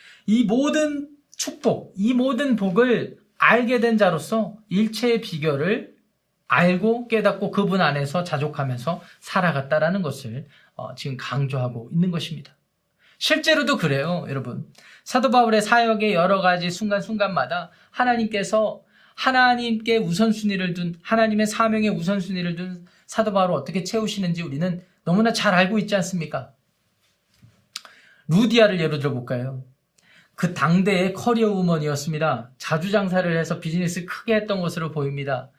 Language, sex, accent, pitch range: Korean, male, native, 165-220 Hz